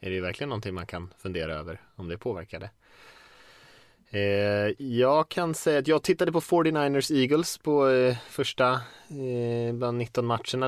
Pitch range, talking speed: 95-120 Hz, 155 wpm